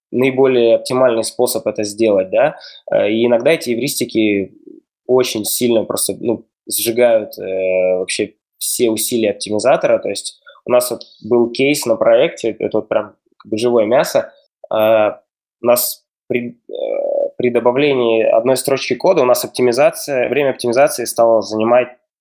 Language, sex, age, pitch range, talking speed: Russian, male, 20-39, 110-130 Hz, 145 wpm